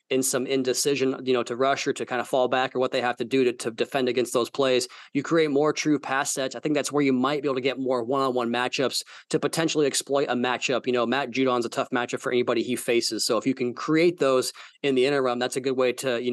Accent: American